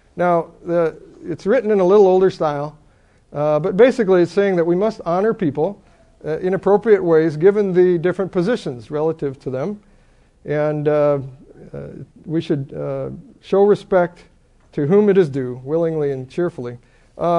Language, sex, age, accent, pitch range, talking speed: English, male, 50-69, American, 145-185 Hz, 160 wpm